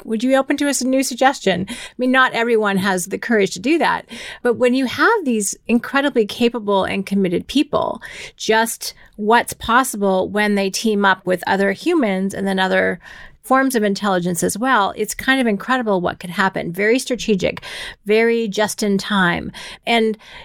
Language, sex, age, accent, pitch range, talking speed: English, female, 30-49, American, 190-250 Hz, 175 wpm